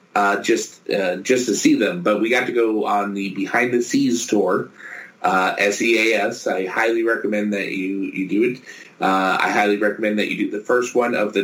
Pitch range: 100-115 Hz